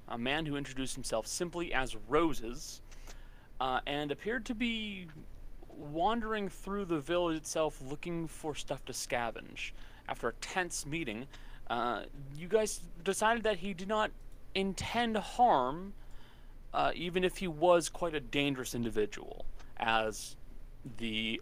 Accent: American